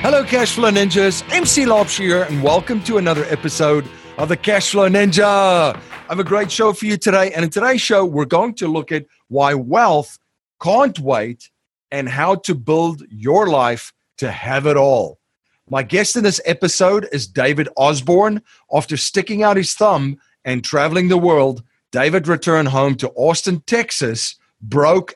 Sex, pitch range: male, 130-185 Hz